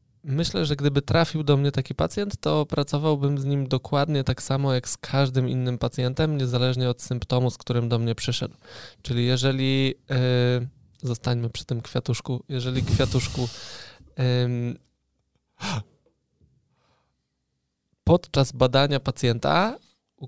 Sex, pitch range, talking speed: male, 125-140 Hz, 120 wpm